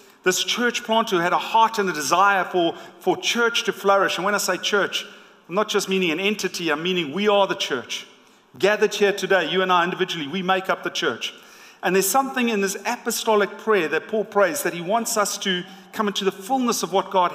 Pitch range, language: 185-215 Hz, English